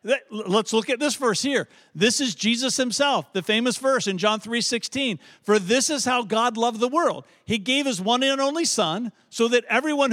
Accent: American